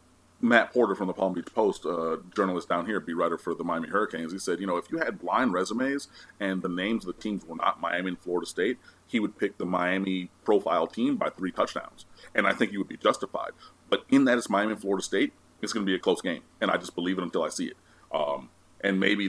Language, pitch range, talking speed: English, 85-100 Hz, 260 wpm